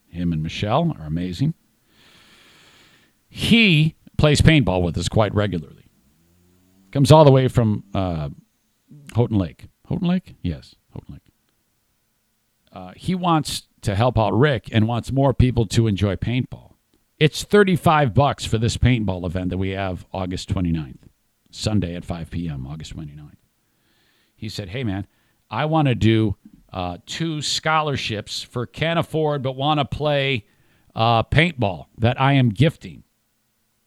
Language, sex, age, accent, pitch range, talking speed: English, male, 50-69, American, 100-145 Hz, 145 wpm